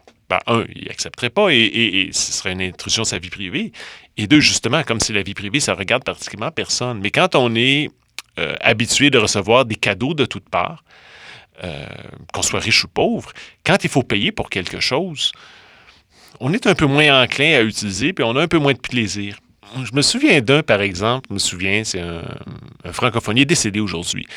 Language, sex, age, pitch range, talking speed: French, male, 30-49, 100-125 Hz, 215 wpm